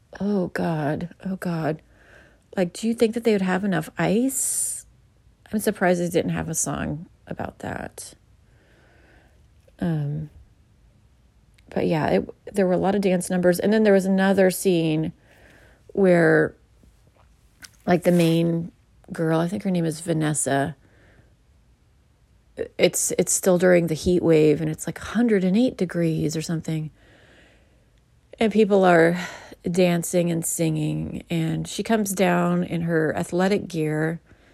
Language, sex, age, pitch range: English, female, 30-49, 155-190 Hz